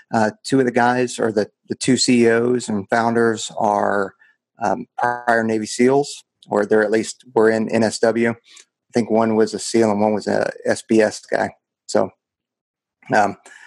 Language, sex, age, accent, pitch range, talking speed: English, male, 30-49, American, 110-125 Hz, 165 wpm